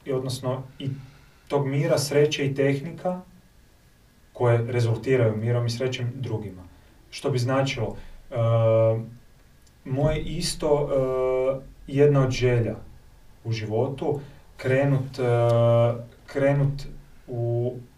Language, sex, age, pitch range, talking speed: Croatian, male, 30-49, 115-135 Hz, 90 wpm